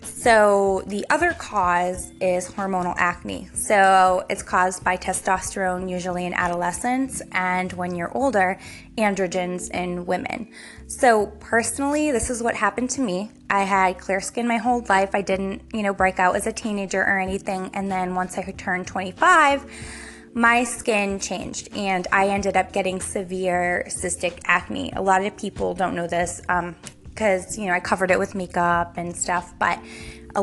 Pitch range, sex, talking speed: 180-220 Hz, female, 170 wpm